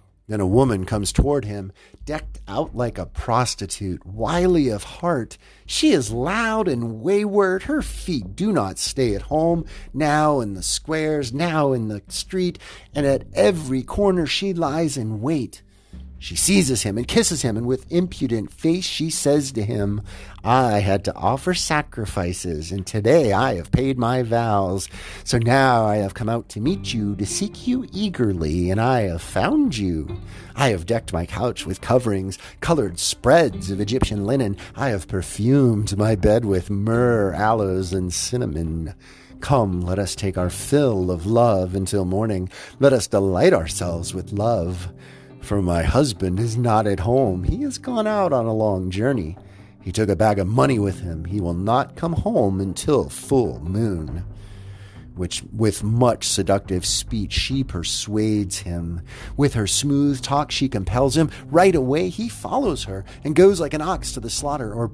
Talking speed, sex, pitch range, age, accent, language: 170 wpm, male, 95-135 Hz, 50-69, American, English